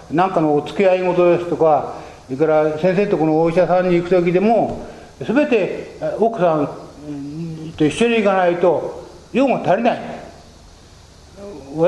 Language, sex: Japanese, male